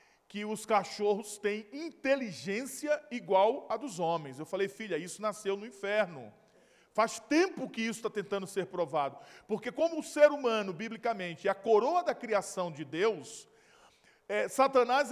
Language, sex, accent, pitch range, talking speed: Portuguese, male, Brazilian, 205-295 Hz, 150 wpm